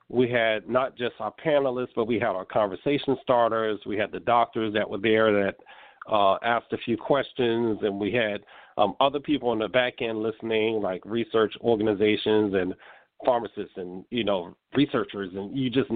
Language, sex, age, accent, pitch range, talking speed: English, male, 50-69, American, 105-130 Hz, 180 wpm